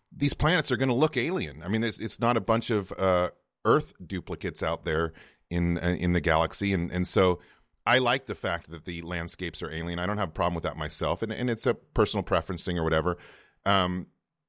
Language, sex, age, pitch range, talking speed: English, male, 30-49, 85-115 Hz, 230 wpm